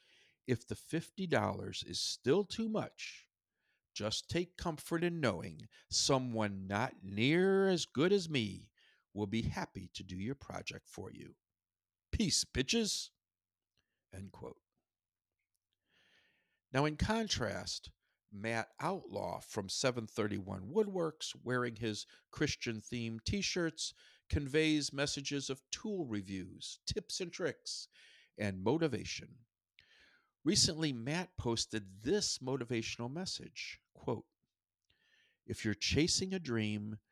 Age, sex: 50-69, male